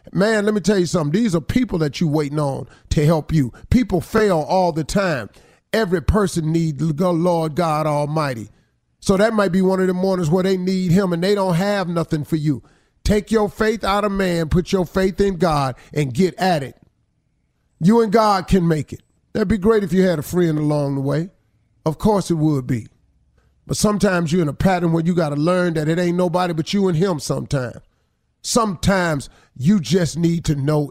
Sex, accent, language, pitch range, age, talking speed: male, American, English, 135-185 Hz, 40-59, 215 wpm